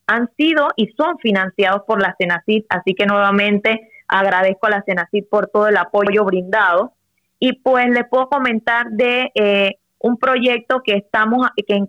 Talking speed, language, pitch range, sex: 155 wpm, Spanish, 195-230 Hz, female